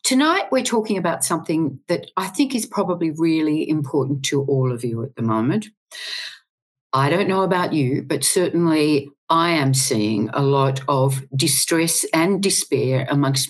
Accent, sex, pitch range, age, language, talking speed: Australian, female, 135-190 Hz, 50-69, English, 160 wpm